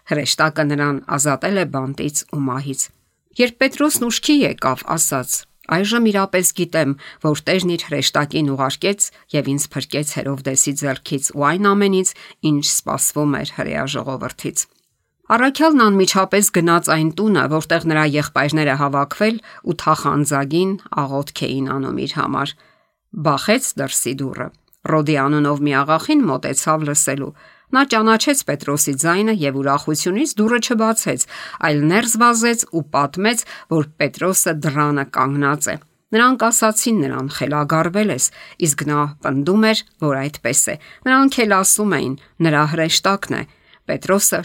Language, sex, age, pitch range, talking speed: English, female, 50-69, 140-195 Hz, 105 wpm